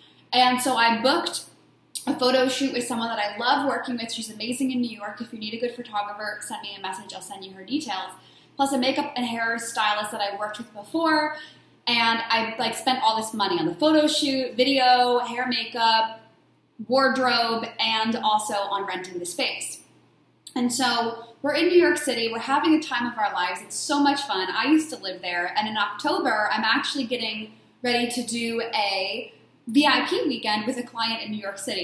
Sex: female